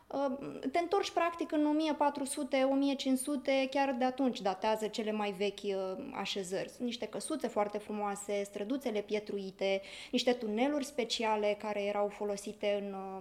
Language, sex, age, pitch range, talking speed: Romanian, female, 20-39, 210-275 Hz, 120 wpm